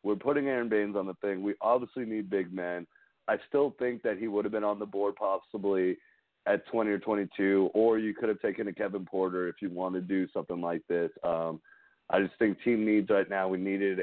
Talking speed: 230 wpm